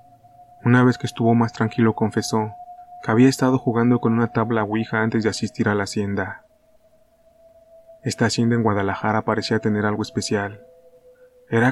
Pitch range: 110-130 Hz